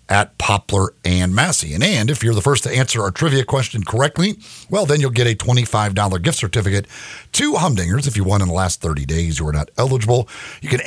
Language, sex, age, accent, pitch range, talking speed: English, male, 50-69, American, 95-140 Hz, 220 wpm